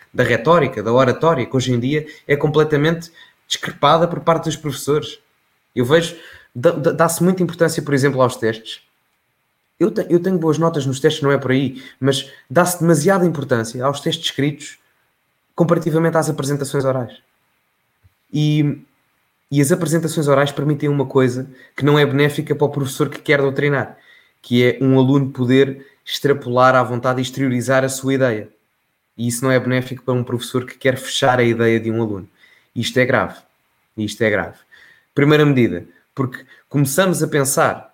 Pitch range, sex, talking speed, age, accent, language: 125-155 Hz, male, 165 wpm, 20-39, Portuguese, Portuguese